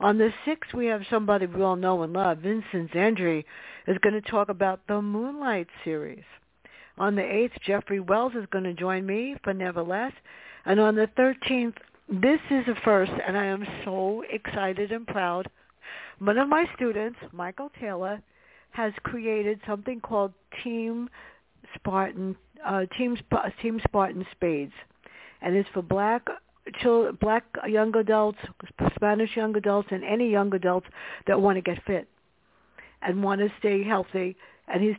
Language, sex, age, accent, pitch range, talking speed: English, female, 60-79, American, 185-220 Hz, 160 wpm